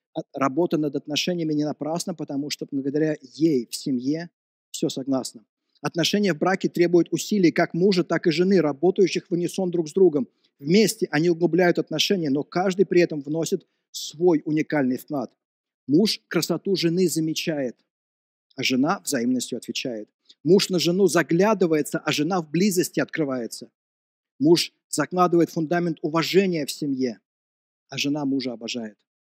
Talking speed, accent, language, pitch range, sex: 140 wpm, native, Russian, 145-180 Hz, male